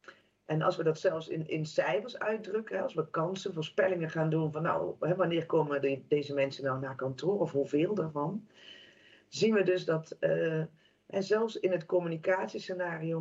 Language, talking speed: Dutch, 165 wpm